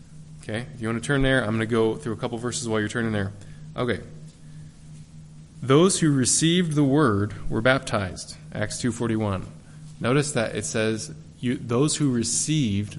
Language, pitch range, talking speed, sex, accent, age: English, 100-130 Hz, 180 wpm, male, American, 20-39